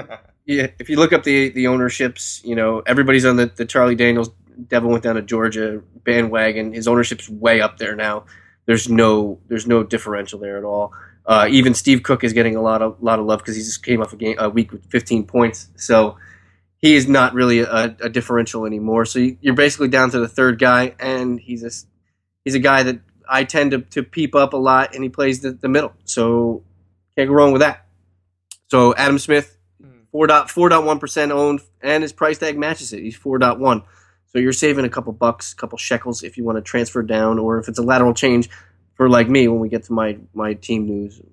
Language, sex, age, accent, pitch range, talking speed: English, male, 20-39, American, 105-130 Hz, 220 wpm